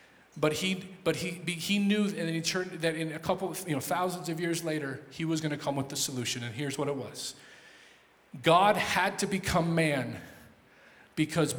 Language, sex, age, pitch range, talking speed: English, male, 40-59, 145-185 Hz, 200 wpm